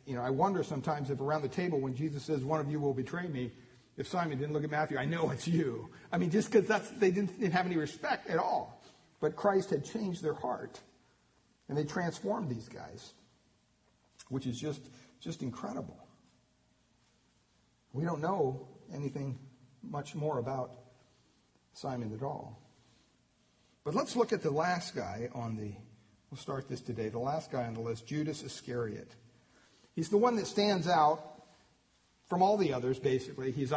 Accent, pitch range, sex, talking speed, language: American, 125-160 Hz, male, 180 wpm, English